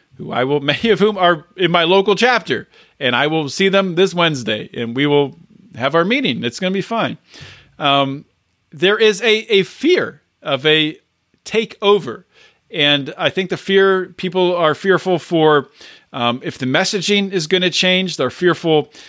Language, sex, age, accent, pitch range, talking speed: English, male, 40-59, American, 140-185 Hz, 180 wpm